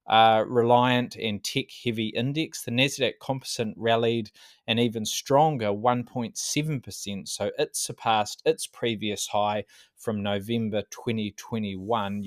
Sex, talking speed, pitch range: male, 110 wpm, 105-125 Hz